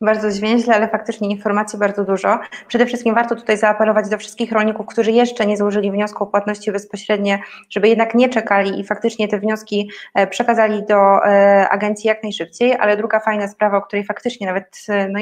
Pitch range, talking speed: 200-225 Hz, 180 wpm